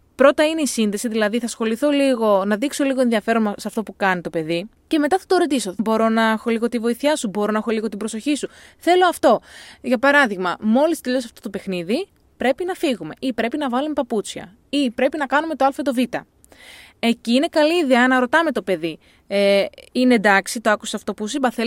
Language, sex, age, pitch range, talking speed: Greek, female, 20-39, 210-275 Hz, 215 wpm